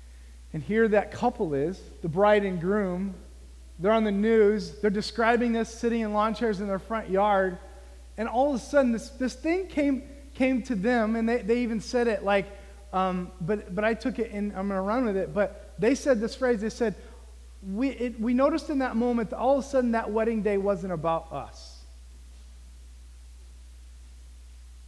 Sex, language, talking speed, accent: male, English, 195 wpm, American